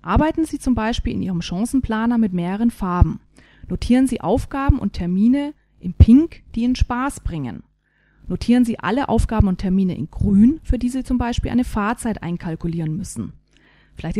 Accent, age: German, 30-49